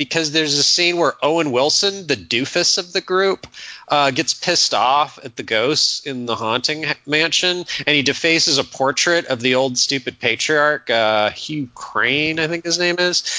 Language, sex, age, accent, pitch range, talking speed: English, male, 30-49, American, 125-170 Hz, 190 wpm